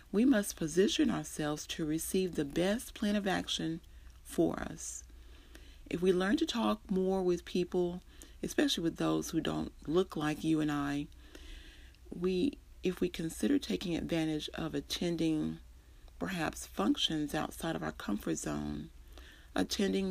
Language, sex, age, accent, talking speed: English, female, 40-59, American, 140 wpm